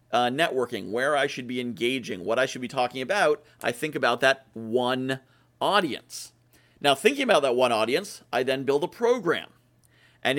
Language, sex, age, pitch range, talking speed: English, male, 40-59, 130-185 Hz, 180 wpm